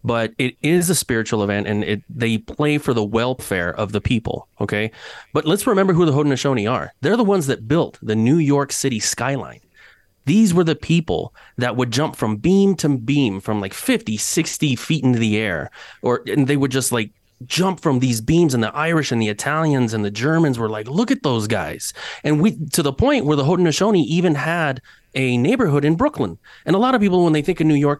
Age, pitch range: 30-49, 115-155 Hz